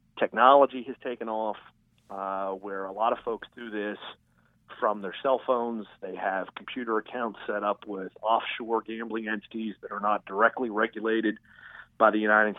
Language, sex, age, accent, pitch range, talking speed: English, male, 40-59, American, 100-115 Hz, 160 wpm